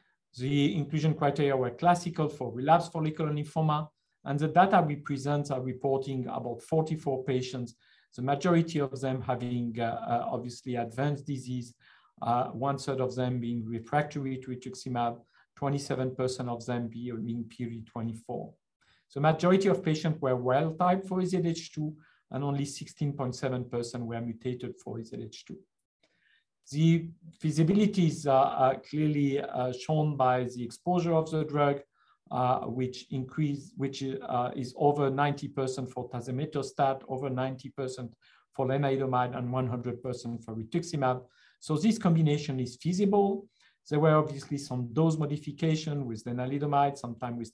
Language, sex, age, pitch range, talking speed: English, male, 50-69, 125-155 Hz, 130 wpm